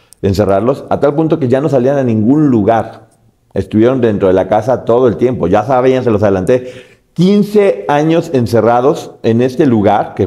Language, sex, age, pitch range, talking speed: Spanish, male, 40-59, 110-140 Hz, 185 wpm